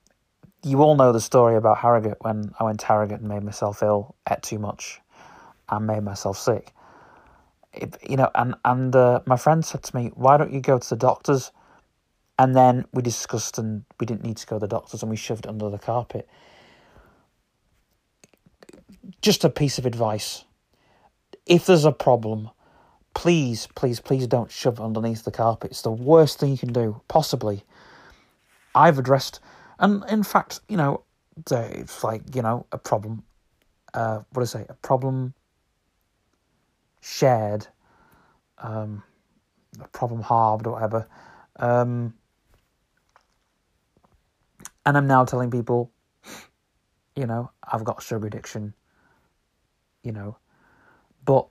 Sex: male